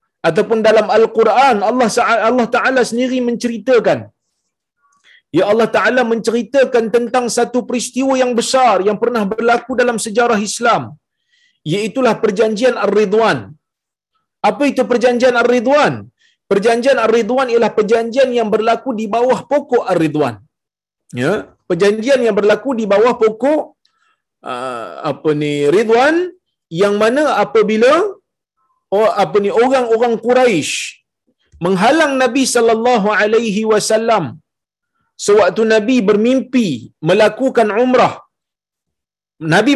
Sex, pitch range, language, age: male, 215-255 Hz, Malayalam, 40-59